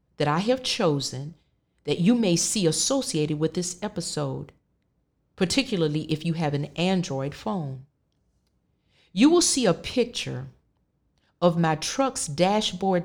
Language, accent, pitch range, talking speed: English, American, 155-210 Hz, 130 wpm